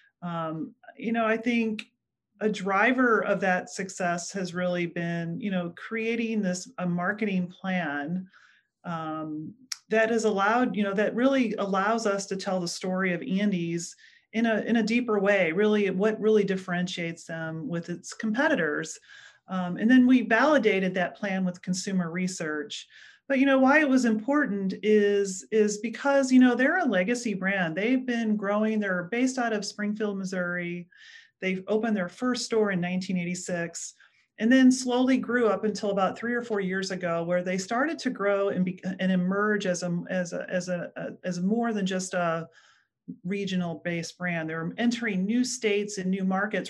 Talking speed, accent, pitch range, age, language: 170 wpm, American, 180-230 Hz, 40-59, English